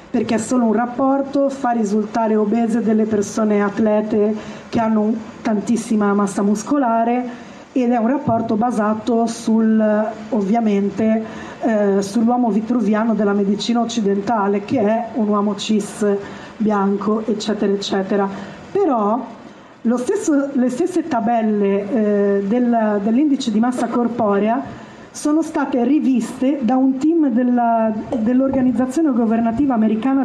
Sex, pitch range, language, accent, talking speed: female, 215-255 Hz, Italian, native, 110 wpm